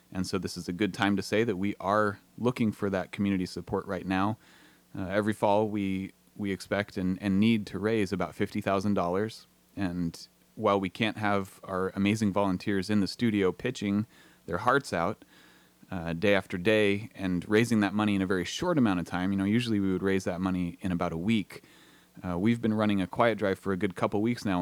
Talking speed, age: 215 wpm, 30-49